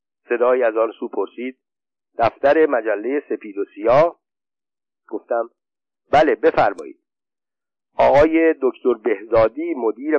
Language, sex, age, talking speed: Persian, male, 50-69, 100 wpm